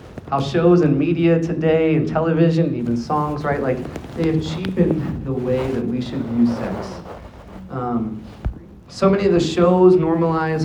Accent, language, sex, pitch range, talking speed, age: American, English, male, 140-175 Hz, 165 wpm, 30-49